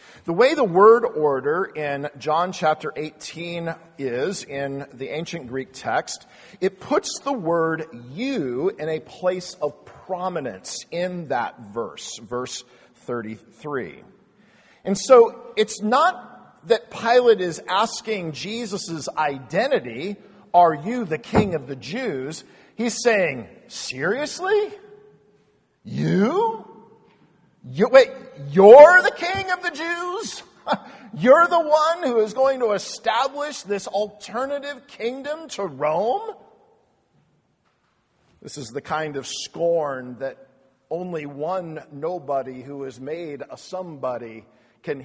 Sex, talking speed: male, 115 wpm